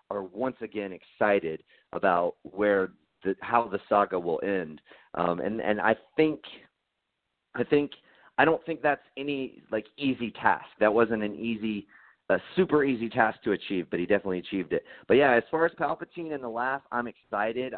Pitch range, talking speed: 105-140 Hz, 175 wpm